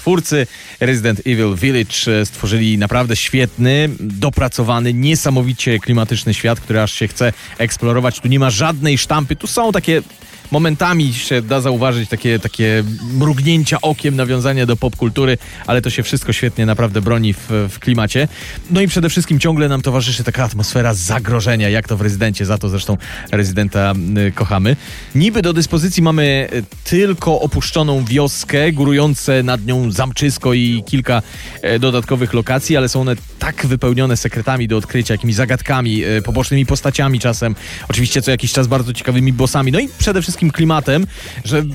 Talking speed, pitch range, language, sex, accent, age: 150 wpm, 110-145 Hz, Polish, male, native, 30-49